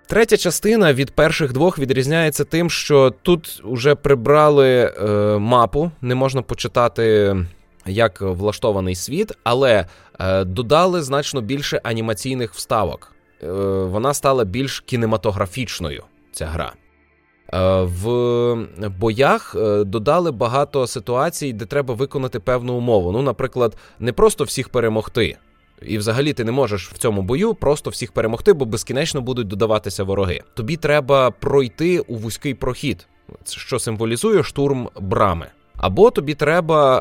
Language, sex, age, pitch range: Ukrainian, male, 20-39, 105-140 Hz